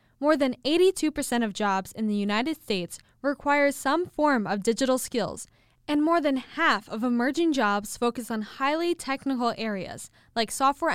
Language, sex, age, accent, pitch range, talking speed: English, female, 10-29, American, 210-285 Hz, 160 wpm